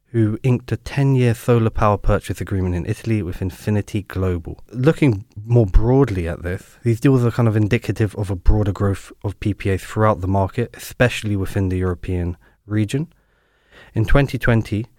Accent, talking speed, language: British, 160 wpm, English